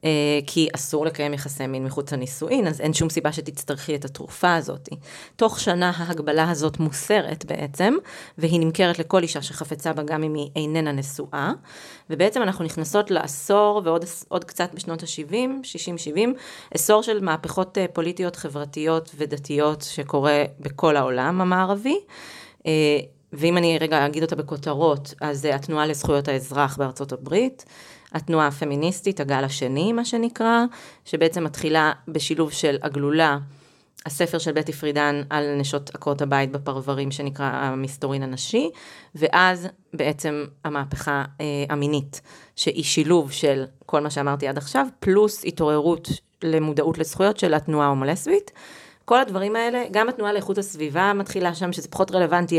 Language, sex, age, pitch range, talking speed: Hebrew, female, 30-49, 145-175 Hz, 135 wpm